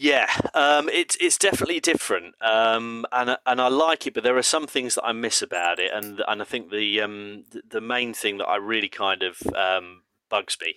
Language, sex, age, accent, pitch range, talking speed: English, male, 30-49, British, 95-135 Hz, 215 wpm